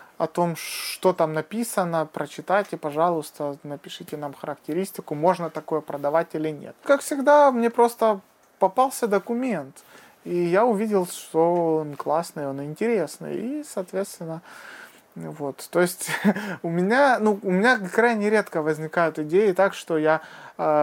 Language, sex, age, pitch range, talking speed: Romanian, male, 20-39, 155-205 Hz, 140 wpm